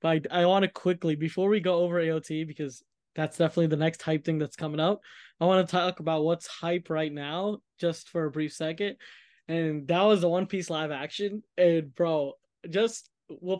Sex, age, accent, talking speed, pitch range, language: male, 10-29, American, 210 wpm, 155-185 Hz, English